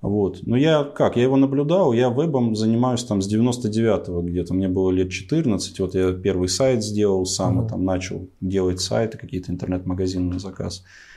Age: 30-49